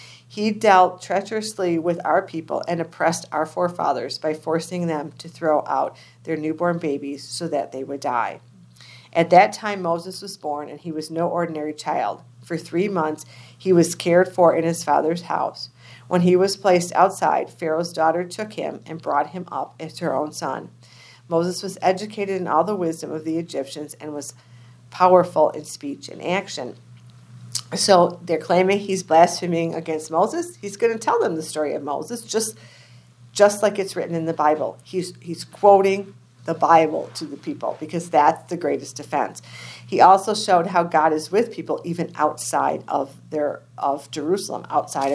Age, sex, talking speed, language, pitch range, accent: 40-59, female, 175 wpm, English, 145-180 Hz, American